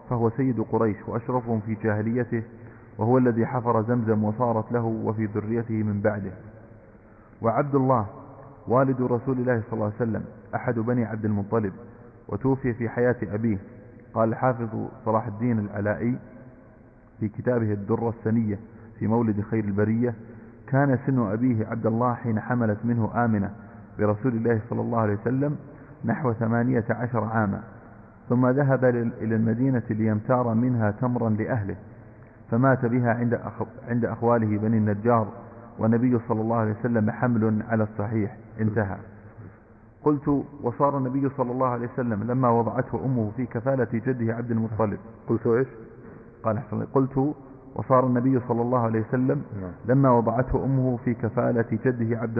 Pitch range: 110-125 Hz